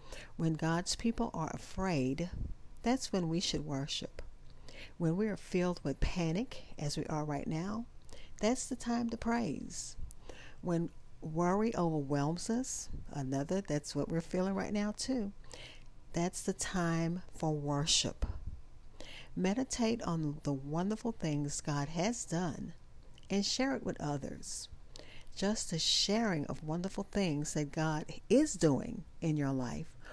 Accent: American